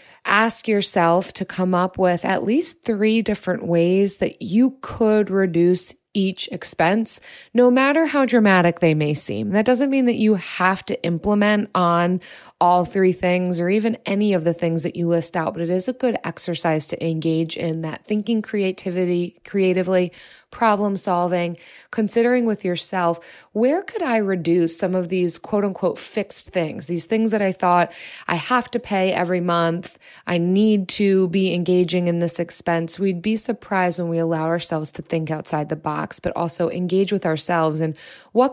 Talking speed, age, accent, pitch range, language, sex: 175 wpm, 20-39, American, 170-210 Hz, English, female